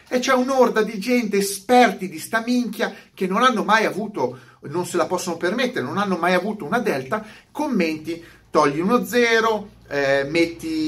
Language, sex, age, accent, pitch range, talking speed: Italian, male, 40-59, native, 145-230 Hz, 170 wpm